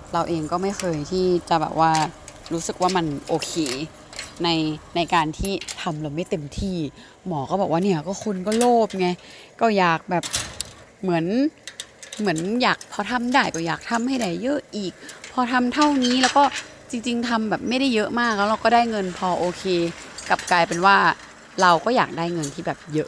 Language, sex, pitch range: Thai, female, 170-230 Hz